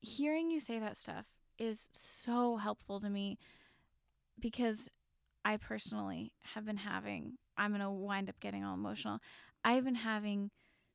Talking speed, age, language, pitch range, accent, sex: 140 wpm, 10-29, English, 205-255 Hz, American, female